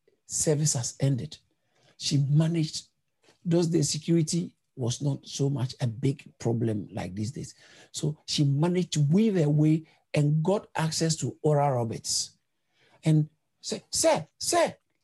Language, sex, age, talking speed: English, male, 60-79, 145 wpm